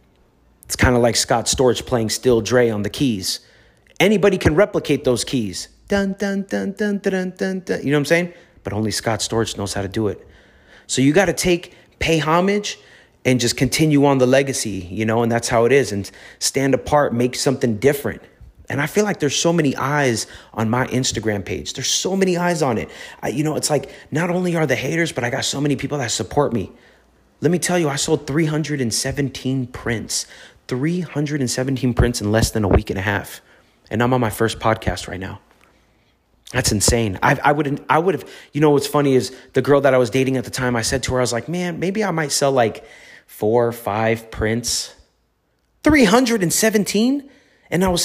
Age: 30-49